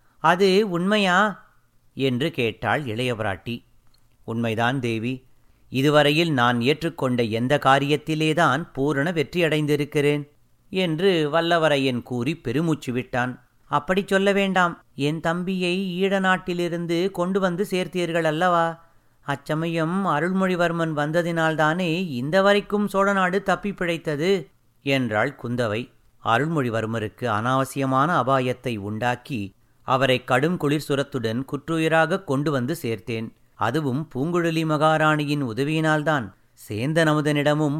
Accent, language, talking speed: native, Tamil, 90 wpm